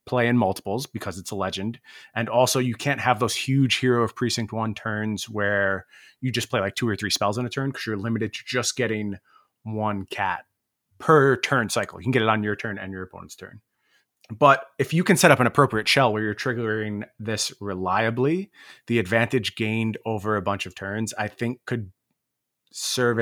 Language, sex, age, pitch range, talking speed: English, male, 30-49, 100-120 Hz, 205 wpm